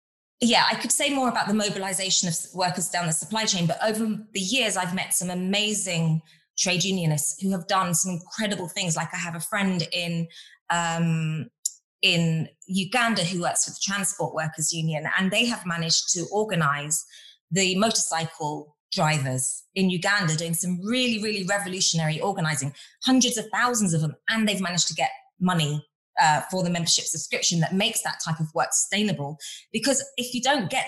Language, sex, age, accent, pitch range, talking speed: English, female, 20-39, British, 160-210 Hz, 175 wpm